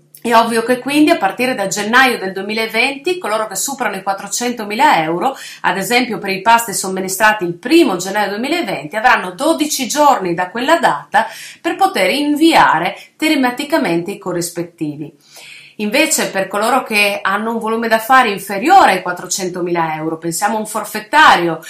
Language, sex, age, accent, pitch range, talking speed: Italian, female, 30-49, native, 190-265 Hz, 150 wpm